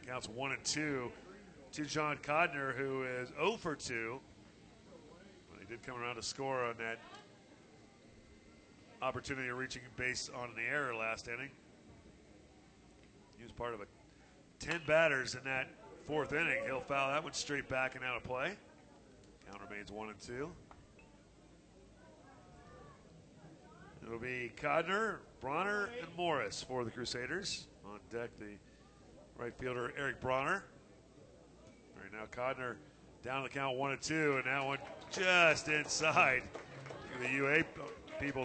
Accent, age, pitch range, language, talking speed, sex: American, 40-59, 120-155 Hz, English, 135 wpm, male